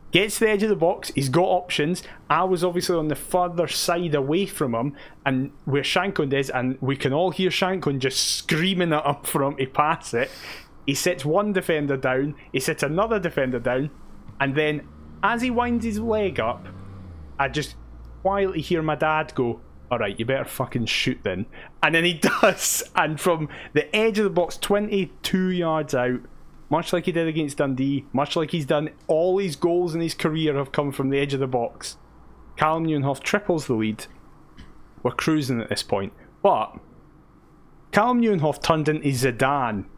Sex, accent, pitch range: male, British, 140-180 Hz